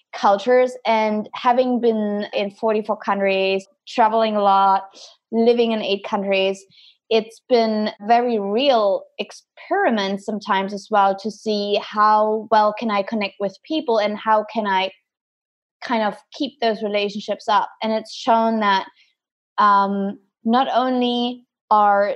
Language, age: English, 20-39